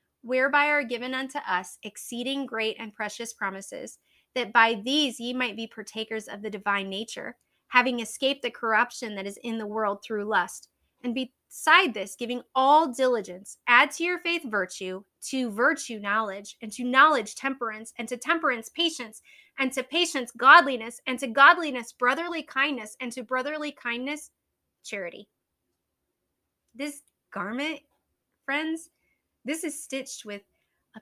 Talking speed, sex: 145 wpm, female